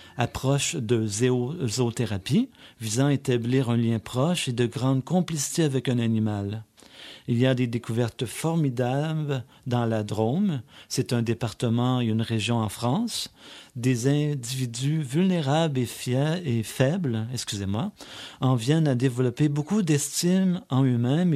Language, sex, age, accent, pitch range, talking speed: French, male, 40-59, French, 120-150 Hz, 140 wpm